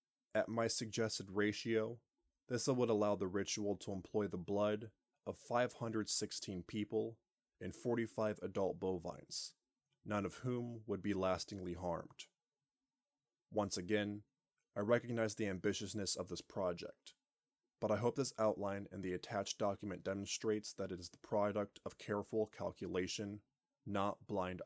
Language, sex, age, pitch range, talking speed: English, male, 20-39, 95-110 Hz, 135 wpm